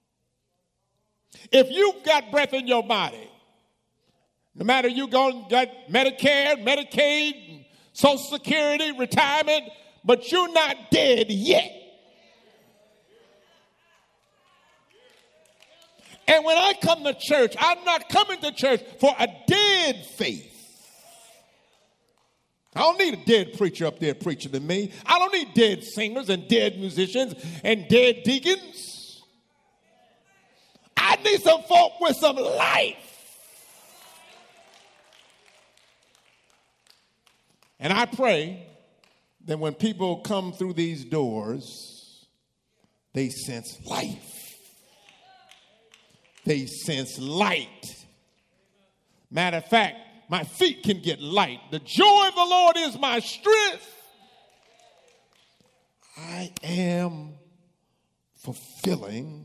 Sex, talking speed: male, 100 wpm